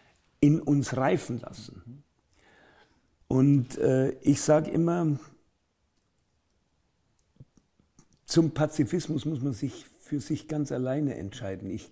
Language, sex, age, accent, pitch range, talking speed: German, male, 50-69, German, 105-140 Hz, 100 wpm